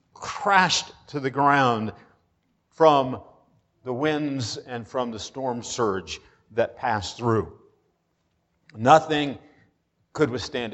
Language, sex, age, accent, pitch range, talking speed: English, male, 50-69, American, 125-160 Hz, 100 wpm